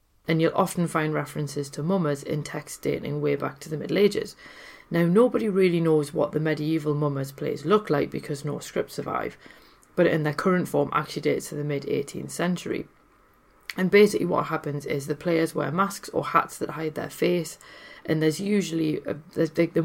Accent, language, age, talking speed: British, English, 30-49, 185 wpm